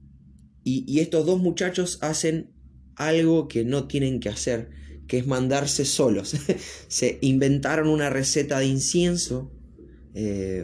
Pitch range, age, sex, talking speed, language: 110-145 Hz, 20-39, male, 125 wpm, Spanish